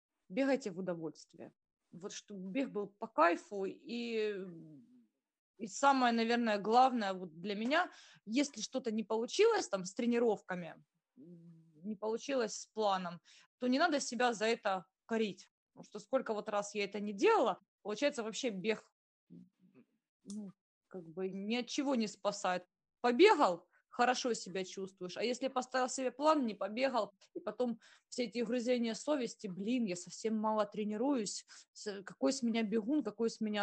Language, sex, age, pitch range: Russian, female, 20-39, 195-245 Hz